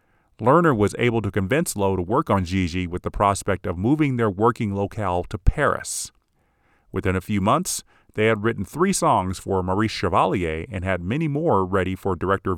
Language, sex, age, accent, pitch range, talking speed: English, male, 40-59, American, 95-115 Hz, 185 wpm